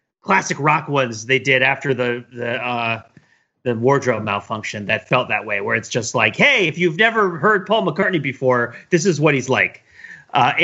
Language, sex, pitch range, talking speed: English, male, 135-185 Hz, 190 wpm